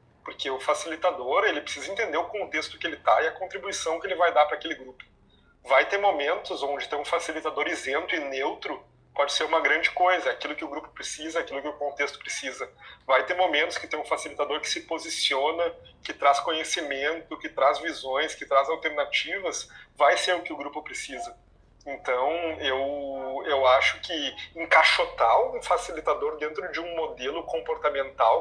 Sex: male